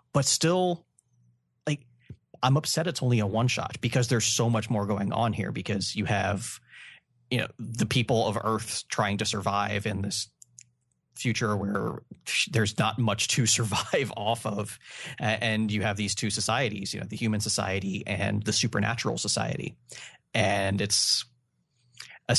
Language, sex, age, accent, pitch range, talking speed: English, male, 30-49, American, 100-120 Hz, 160 wpm